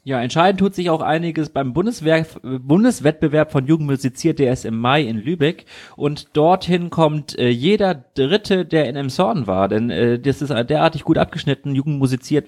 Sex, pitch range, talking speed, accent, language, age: male, 120-150 Hz, 175 wpm, German, German, 30-49